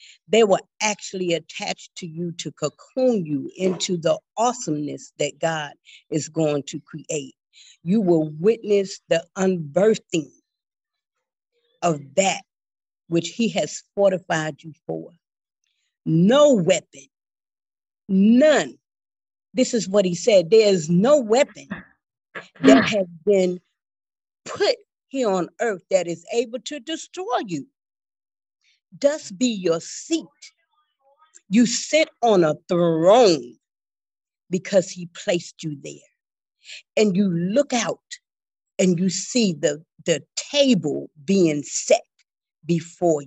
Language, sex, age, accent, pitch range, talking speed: English, female, 50-69, American, 165-235 Hz, 115 wpm